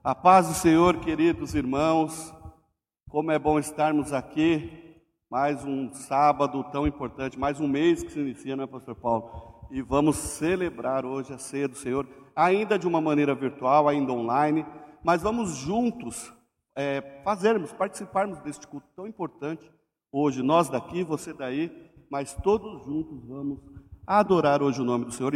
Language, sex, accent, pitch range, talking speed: Portuguese, male, Brazilian, 130-170 Hz, 155 wpm